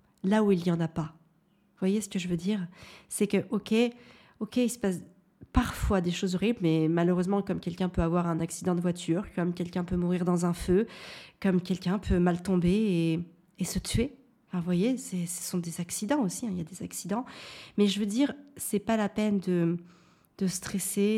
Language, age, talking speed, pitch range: French, 40-59, 220 wpm, 175-205 Hz